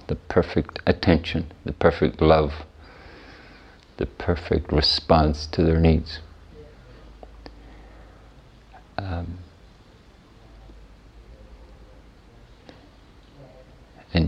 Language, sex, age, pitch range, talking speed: English, male, 50-69, 80-90 Hz, 55 wpm